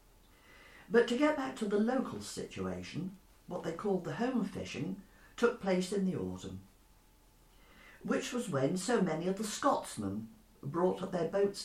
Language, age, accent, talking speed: English, 60-79, British, 160 wpm